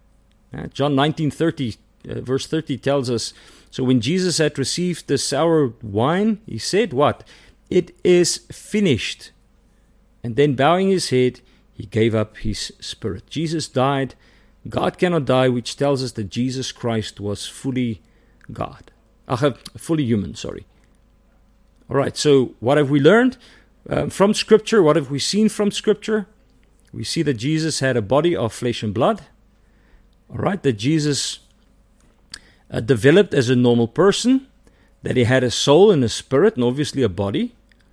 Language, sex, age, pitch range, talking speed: English, male, 50-69, 115-165 Hz, 155 wpm